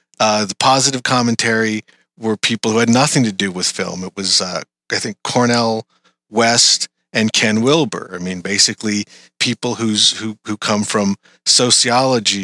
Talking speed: 160 wpm